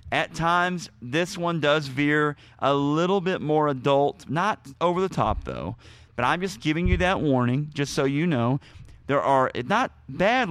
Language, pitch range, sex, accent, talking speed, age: English, 120-150 Hz, male, American, 175 wpm, 40-59